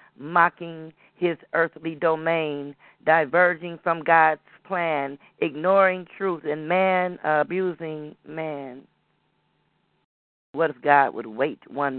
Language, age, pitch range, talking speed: English, 40-59, 130-180 Hz, 100 wpm